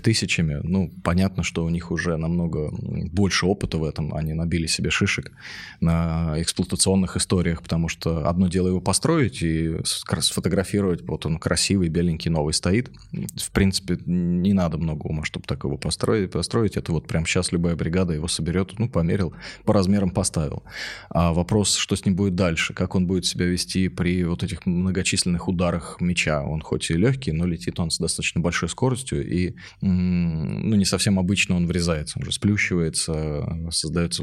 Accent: native